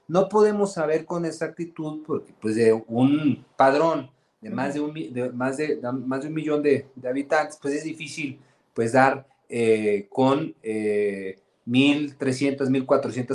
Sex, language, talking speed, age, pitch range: male, Spanish, 150 wpm, 40-59, 120-150 Hz